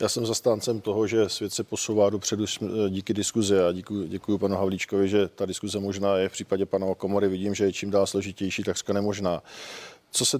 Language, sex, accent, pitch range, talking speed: Czech, male, native, 100-120 Hz, 195 wpm